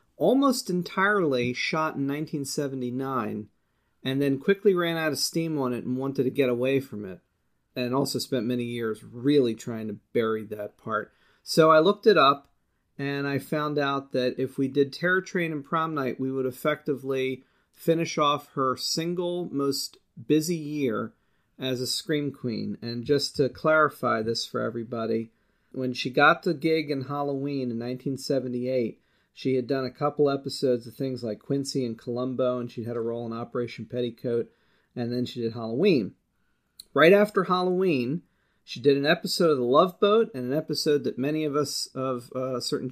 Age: 40-59